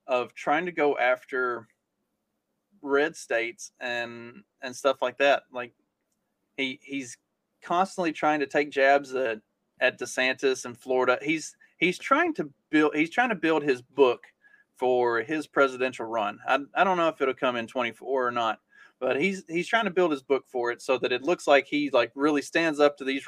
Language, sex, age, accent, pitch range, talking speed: English, male, 30-49, American, 125-150 Hz, 190 wpm